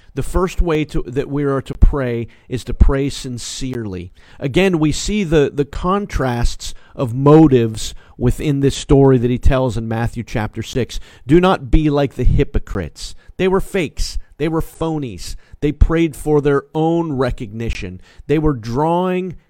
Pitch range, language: 115-175 Hz, English